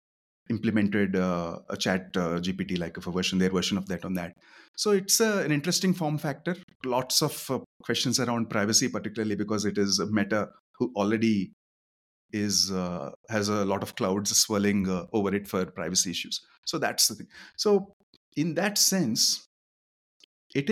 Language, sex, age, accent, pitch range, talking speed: English, male, 30-49, Indian, 100-145 Hz, 170 wpm